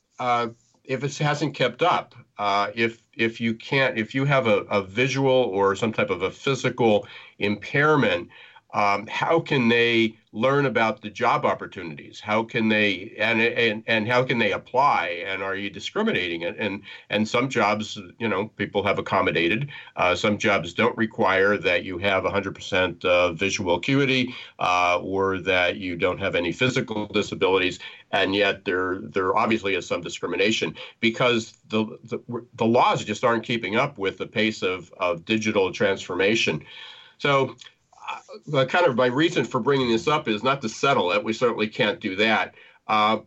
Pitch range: 100-125 Hz